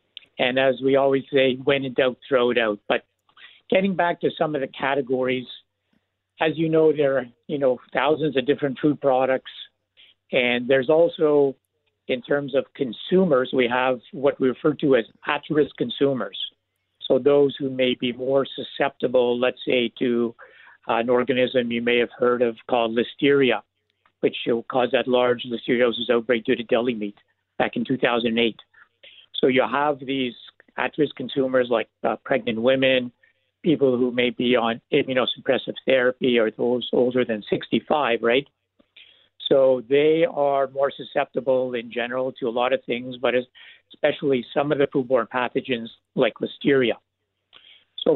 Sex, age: male, 60-79